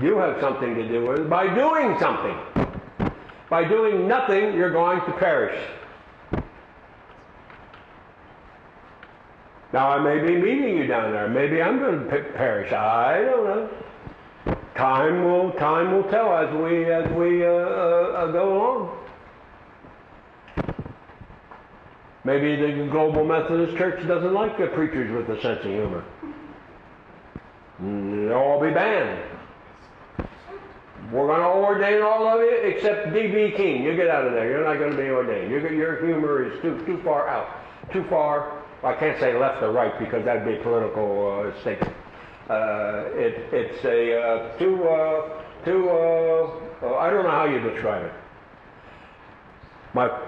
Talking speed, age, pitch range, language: 150 wpm, 60-79, 135-190 Hz, Russian